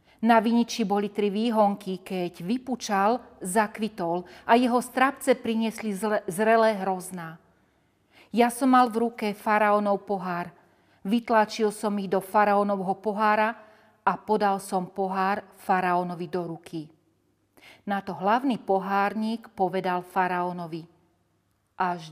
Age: 40-59